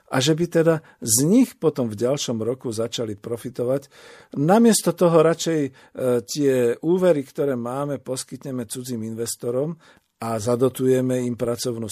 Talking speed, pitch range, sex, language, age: 130 wpm, 120-150 Hz, male, Slovak, 50-69